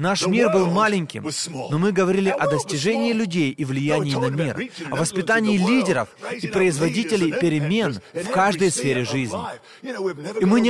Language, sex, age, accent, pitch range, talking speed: Russian, male, 20-39, native, 165-225 Hz, 150 wpm